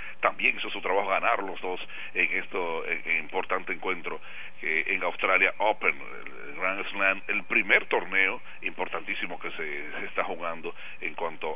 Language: Spanish